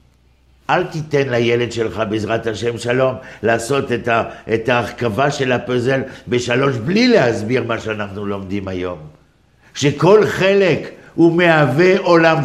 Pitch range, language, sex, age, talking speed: 95-155 Hz, Hebrew, male, 60-79, 115 wpm